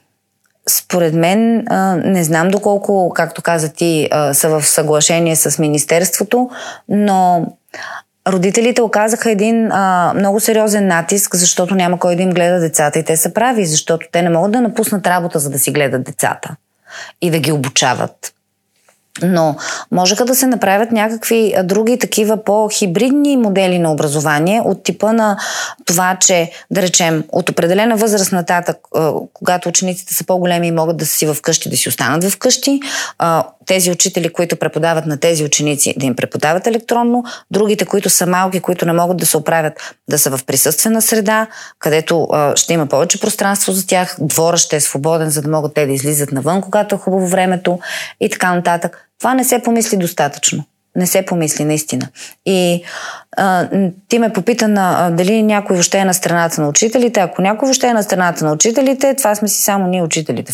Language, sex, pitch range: Bulgarian, female, 165-210 Hz